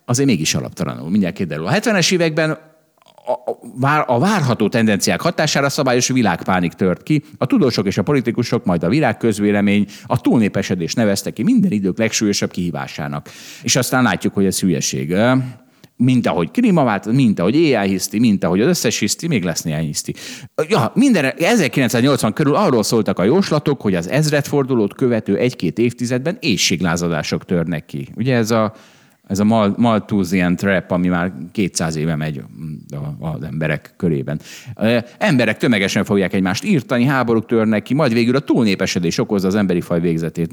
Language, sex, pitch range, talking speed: Hungarian, male, 90-135 Hz, 155 wpm